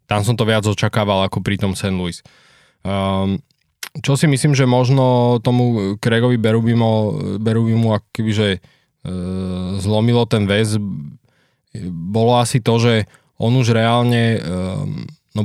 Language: Slovak